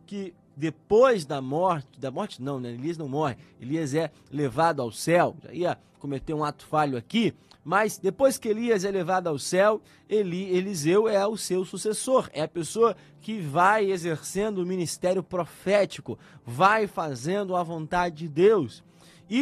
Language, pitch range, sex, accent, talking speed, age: Portuguese, 160-210 Hz, male, Brazilian, 165 wpm, 20-39